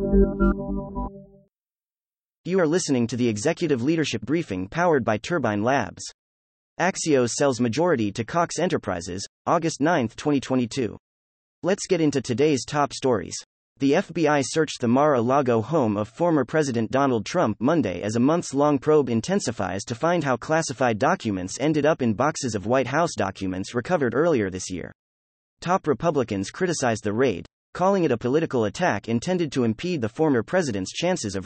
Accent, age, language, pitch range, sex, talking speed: American, 30-49, English, 105-160 Hz, male, 150 wpm